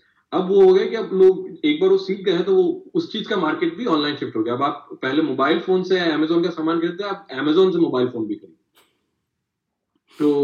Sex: male